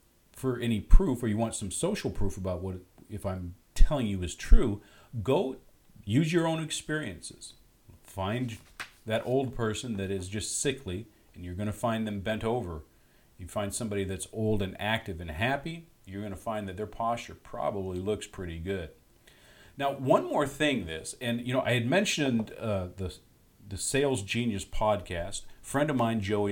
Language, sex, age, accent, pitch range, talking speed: English, male, 40-59, American, 95-125 Hz, 175 wpm